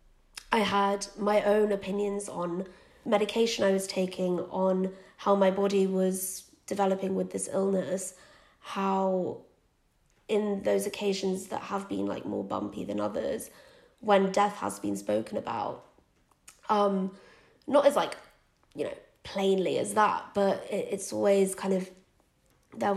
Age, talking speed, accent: 20-39, 135 wpm, British